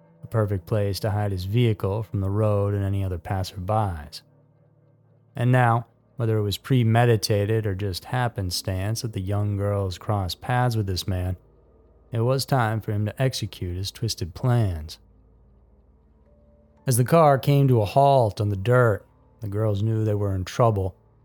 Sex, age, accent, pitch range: male, 30-49, American, 95-115 Hz